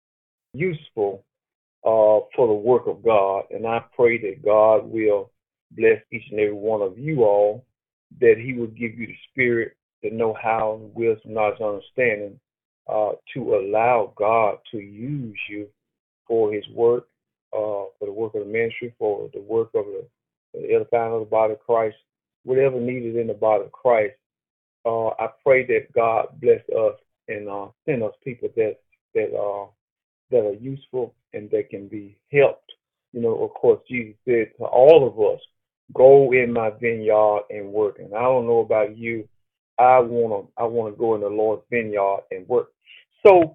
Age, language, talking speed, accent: 40-59, English, 180 wpm, American